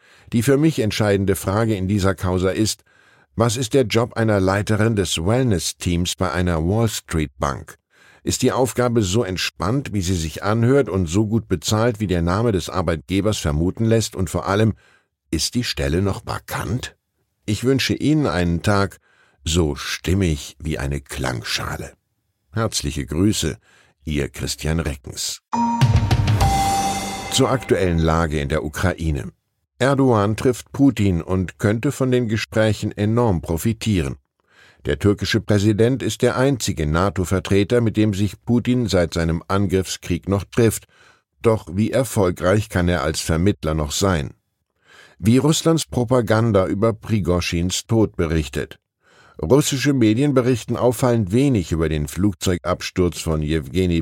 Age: 10-29